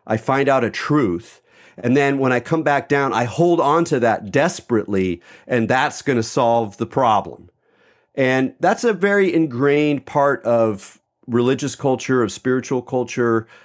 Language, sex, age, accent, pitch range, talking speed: English, male, 40-59, American, 115-145 Hz, 165 wpm